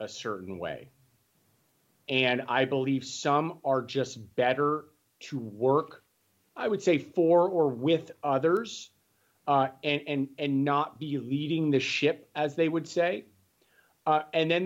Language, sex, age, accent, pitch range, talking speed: English, male, 40-59, American, 130-165 Hz, 145 wpm